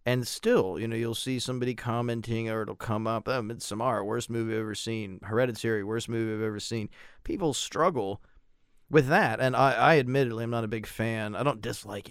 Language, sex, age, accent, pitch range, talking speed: English, male, 30-49, American, 115-150 Hz, 210 wpm